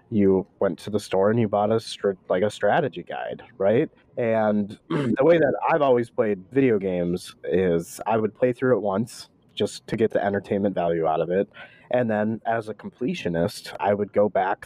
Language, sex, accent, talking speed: English, male, American, 200 wpm